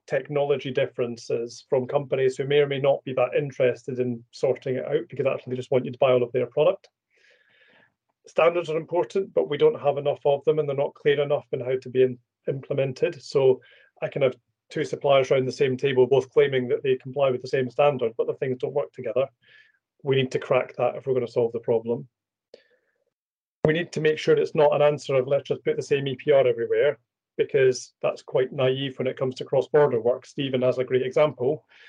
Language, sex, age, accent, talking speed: English, male, 30-49, British, 220 wpm